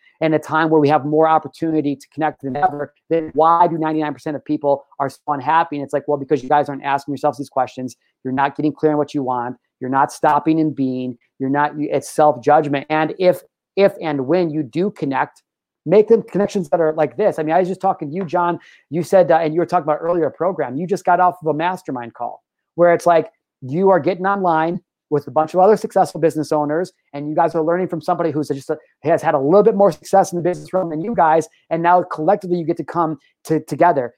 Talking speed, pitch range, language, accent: 240 wpm, 145-175 Hz, English, American